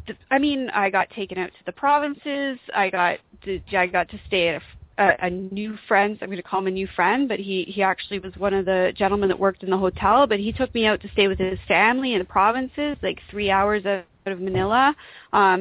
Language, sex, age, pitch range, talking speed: English, female, 30-49, 195-245 Hz, 250 wpm